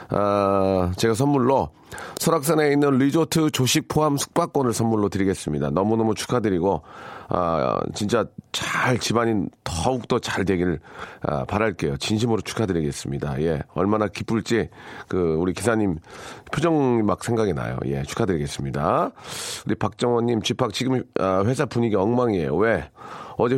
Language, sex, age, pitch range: Korean, male, 40-59, 95-125 Hz